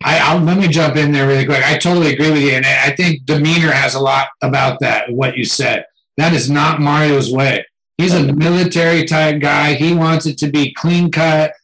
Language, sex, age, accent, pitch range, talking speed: English, male, 50-69, American, 150-175 Hz, 215 wpm